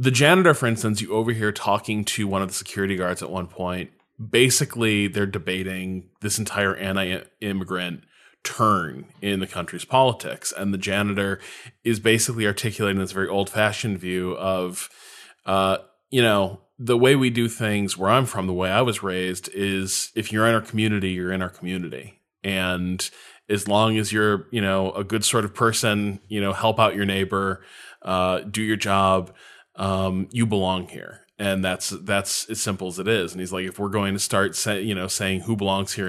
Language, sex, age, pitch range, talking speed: English, male, 20-39, 95-110 Hz, 190 wpm